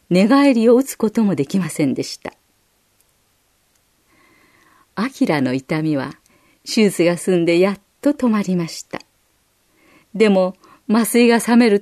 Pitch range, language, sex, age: 170-240 Hz, Japanese, female, 40-59